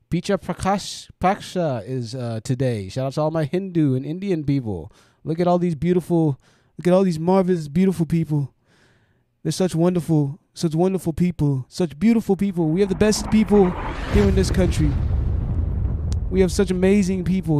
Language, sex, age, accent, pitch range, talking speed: English, male, 20-39, American, 120-170 Hz, 170 wpm